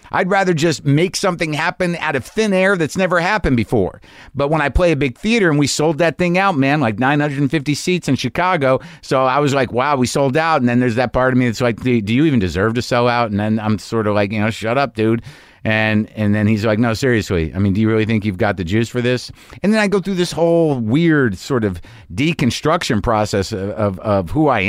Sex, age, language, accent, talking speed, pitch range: male, 50-69, English, American, 255 wpm, 105-155 Hz